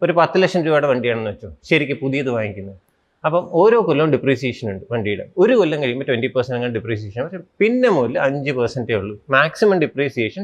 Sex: male